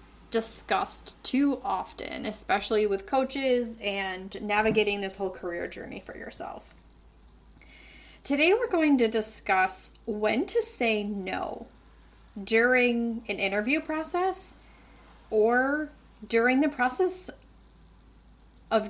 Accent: American